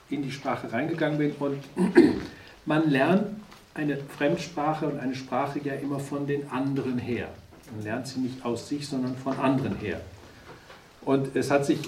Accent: German